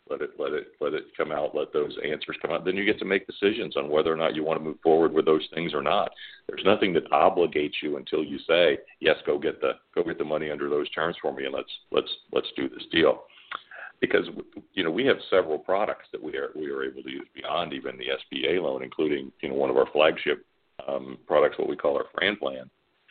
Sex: male